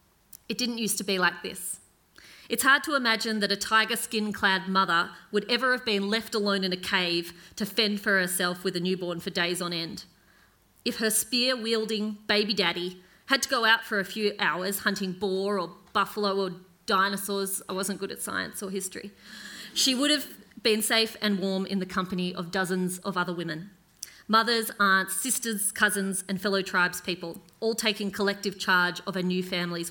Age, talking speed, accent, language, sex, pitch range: 30-49, 185 wpm, Australian, English, female, 180-210 Hz